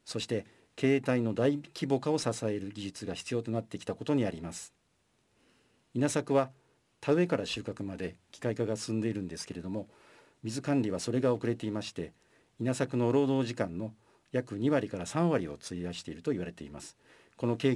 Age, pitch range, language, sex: 50-69, 100-130 Hz, Japanese, male